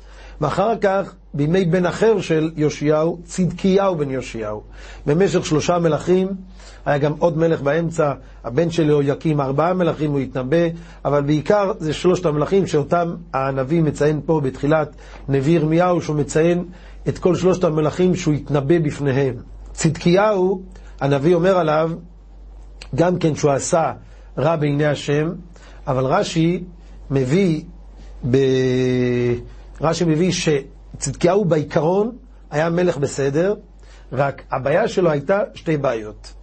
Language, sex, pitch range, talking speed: Hebrew, male, 140-175 Hz, 120 wpm